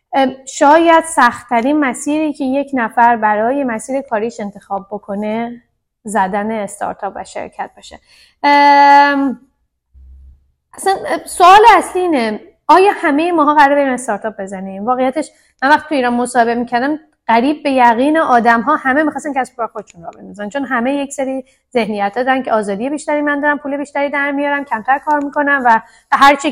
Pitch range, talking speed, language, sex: 225-295 Hz, 145 wpm, Persian, female